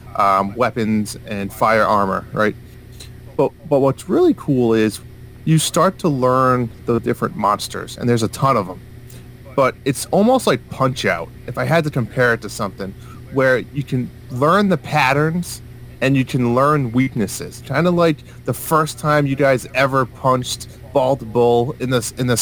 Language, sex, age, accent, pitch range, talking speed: English, male, 30-49, American, 120-145 Hz, 175 wpm